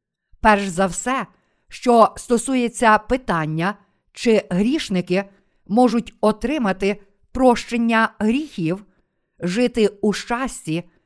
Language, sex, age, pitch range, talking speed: Ukrainian, female, 50-69, 185-235 Hz, 80 wpm